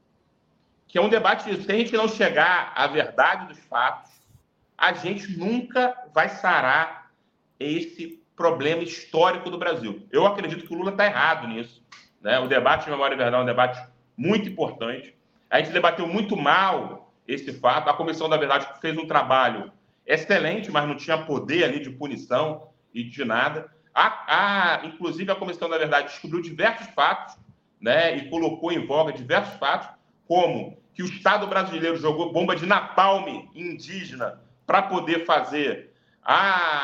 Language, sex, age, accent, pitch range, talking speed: Portuguese, male, 40-59, Brazilian, 155-195 Hz, 160 wpm